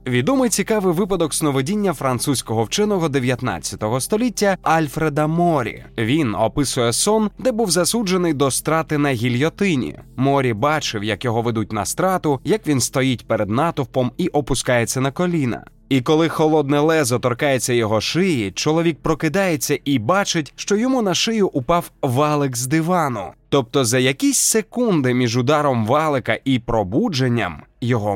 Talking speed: 140 wpm